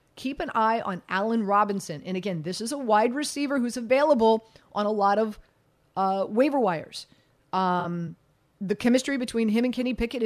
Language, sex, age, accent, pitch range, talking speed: English, female, 30-49, American, 195-250 Hz, 175 wpm